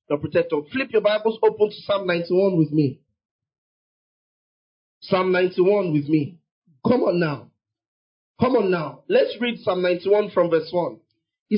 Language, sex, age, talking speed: English, male, 40-59, 150 wpm